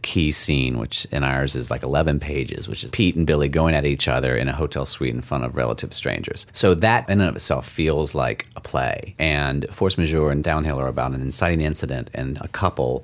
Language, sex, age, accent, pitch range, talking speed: English, male, 30-49, American, 70-95 Hz, 230 wpm